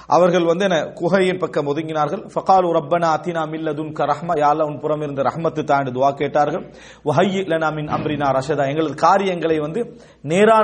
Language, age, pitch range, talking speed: English, 40-59, 160-210 Hz, 195 wpm